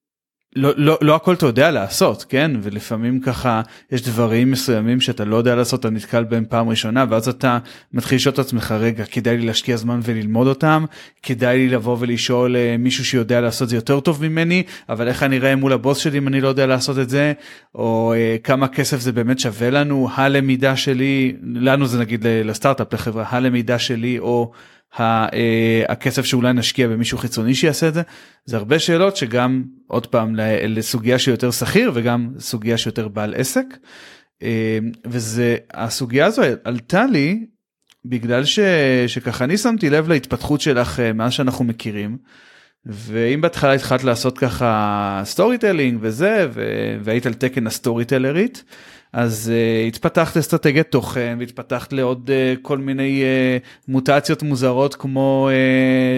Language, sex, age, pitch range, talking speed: Hebrew, male, 30-49, 120-140 Hz, 155 wpm